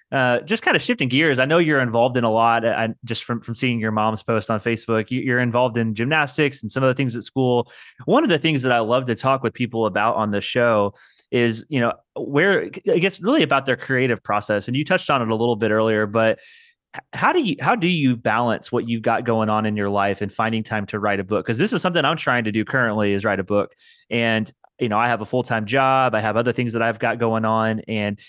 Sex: male